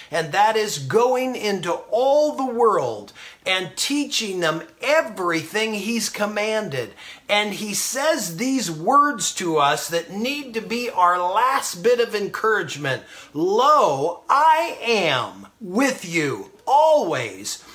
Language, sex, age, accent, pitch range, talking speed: English, male, 40-59, American, 185-275 Hz, 120 wpm